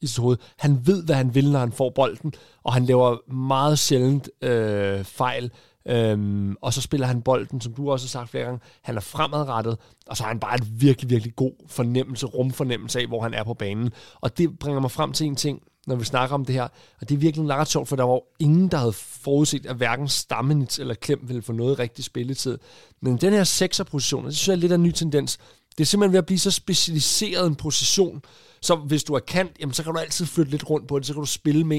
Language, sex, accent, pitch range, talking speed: Danish, male, native, 125-175 Hz, 245 wpm